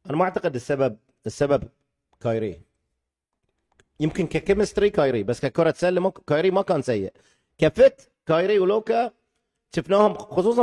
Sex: male